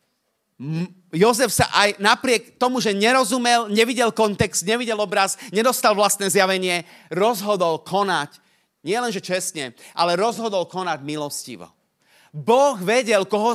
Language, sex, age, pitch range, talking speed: Slovak, male, 30-49, 150-225 Hz, 120 wpm